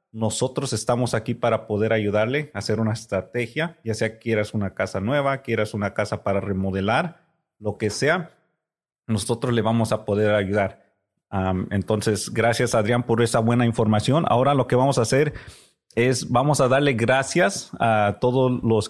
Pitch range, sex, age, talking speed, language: 100-120 Hz, male, 30-49, 170 wpm, English